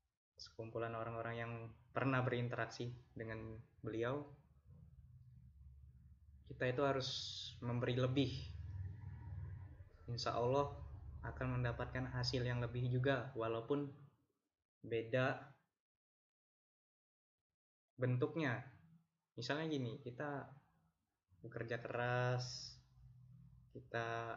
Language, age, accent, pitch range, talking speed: Indonesian, 20-39, native, 115-130 Hz, 70 wpm